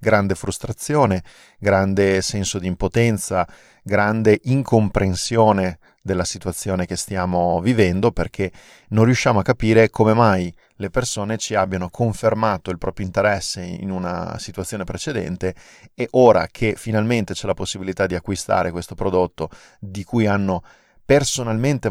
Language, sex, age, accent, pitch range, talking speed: Italian, male, 30-49, native, 90-110 Hz, 130 wpm